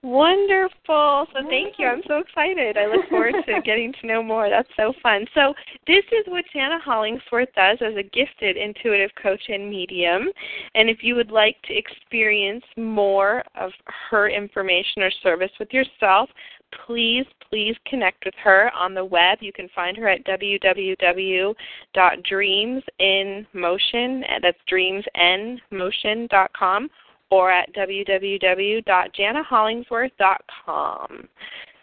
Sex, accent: female, American